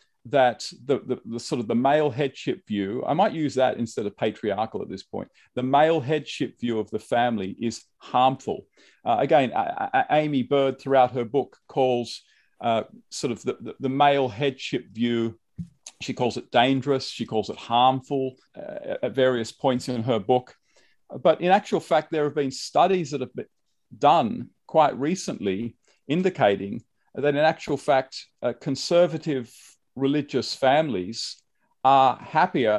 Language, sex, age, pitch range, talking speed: English, male, 40-59, 120-150 Hz, 160 wpm